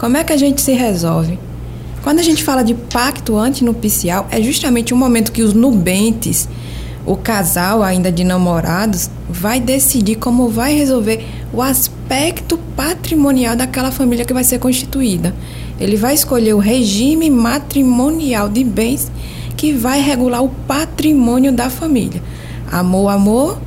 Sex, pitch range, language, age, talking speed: female, 190-255 Hz, Portuguese, 20-39, 145 wpm